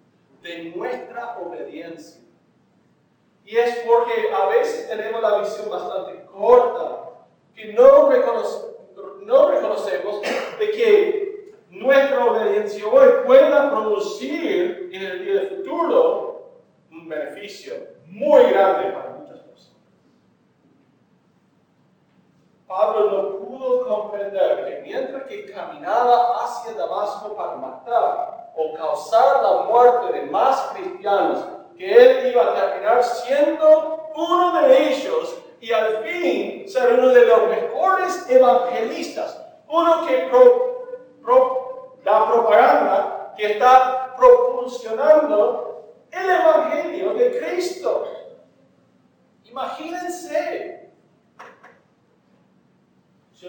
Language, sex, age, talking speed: Spanish, male, 40-59, 95 wpm